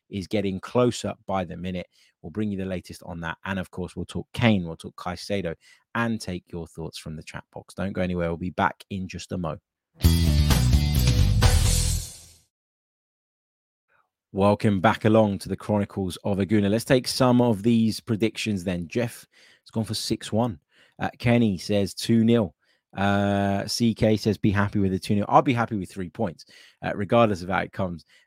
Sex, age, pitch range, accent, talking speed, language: male, 20-39, 95-110 Hz, British, 185 wpm, English